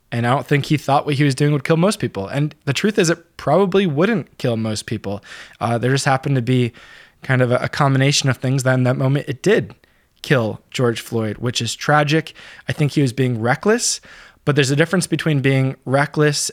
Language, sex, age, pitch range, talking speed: English, male, 20-39, 120-150 Hz, 225 wpm